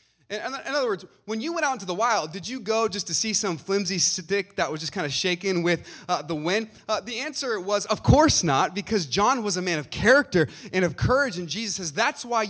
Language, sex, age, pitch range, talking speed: English, male, 30-49, 155-210 Hz, 245 wpm